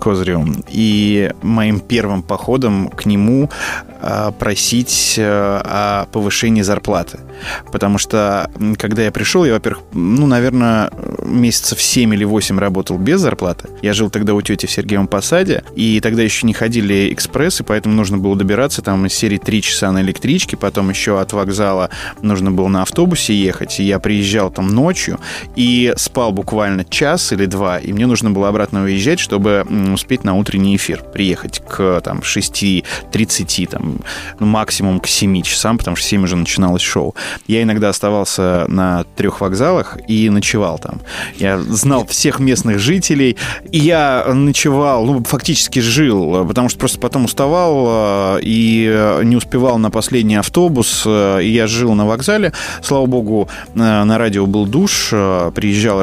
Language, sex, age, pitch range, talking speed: Russian, male, 20-39, 100-120 Hz, 150 wpm